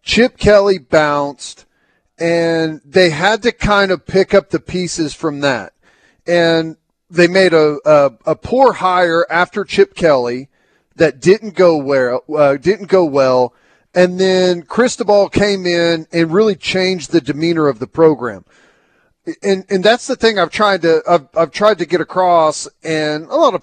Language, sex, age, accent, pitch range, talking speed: English, male, 40-59, American, 145-185 Hz, 170 wpm